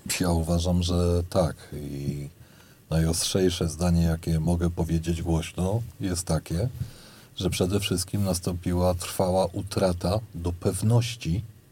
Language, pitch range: Polish, 85-115 Hz